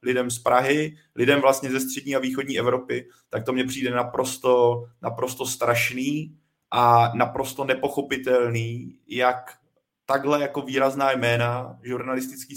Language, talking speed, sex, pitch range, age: Czech, 125 wpm, male, 120-140 Hz, 20-39